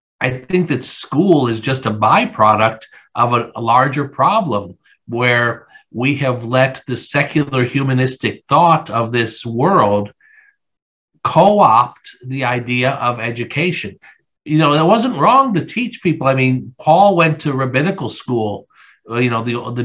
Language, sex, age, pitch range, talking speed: English, male, 50-69, 120-145 Hz, 140 wpm